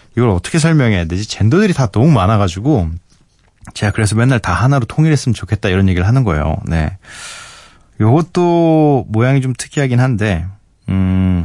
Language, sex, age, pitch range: Korean, male, 20-39, 95-150 Hz